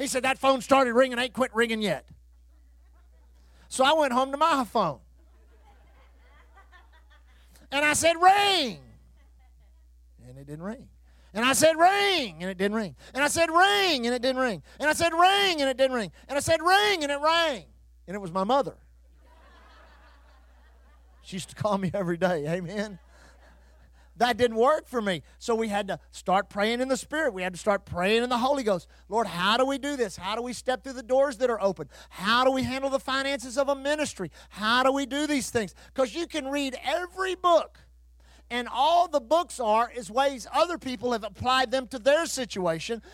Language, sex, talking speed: English, male, 200 wpm